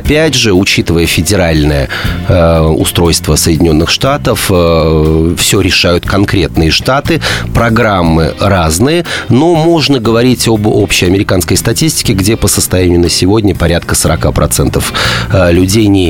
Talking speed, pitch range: 105 wpm, 80-105 Hz